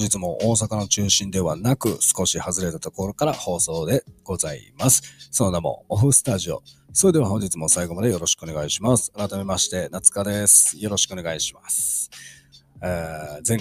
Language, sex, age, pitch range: Japanese, male, 40-59, 85-105 Hz